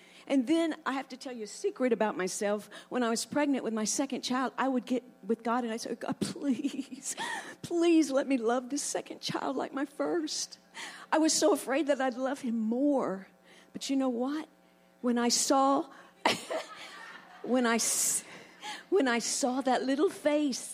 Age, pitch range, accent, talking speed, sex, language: 50-69, 220-295 Hz, American, 180 wpm, female, English